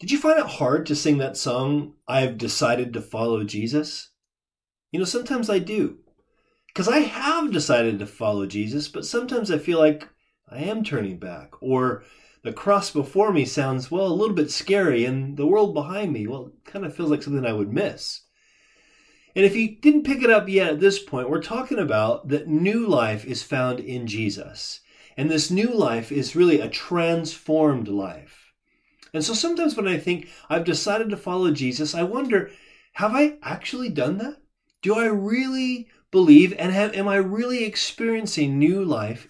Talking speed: 180 wpm